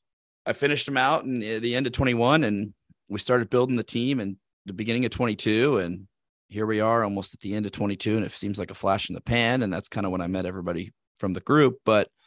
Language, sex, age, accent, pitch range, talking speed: English, male, 30-49, American, 95-115 Hz, 255 wpm